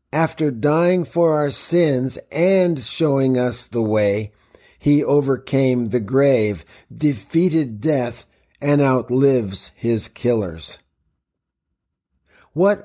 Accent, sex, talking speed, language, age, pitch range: American, male, 100 wpm, English, 50-69, 120-150 Hz